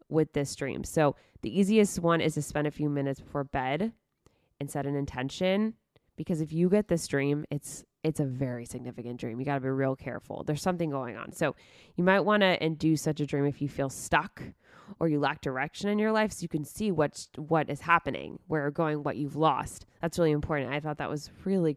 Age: 20-39